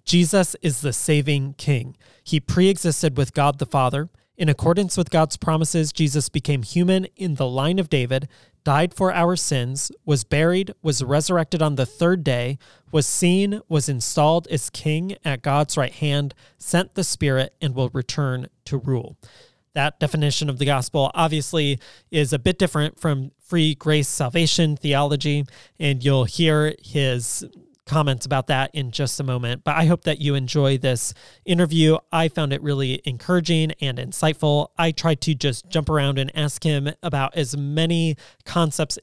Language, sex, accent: English, male, American